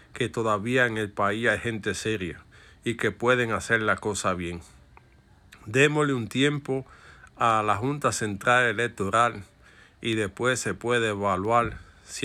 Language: Spanish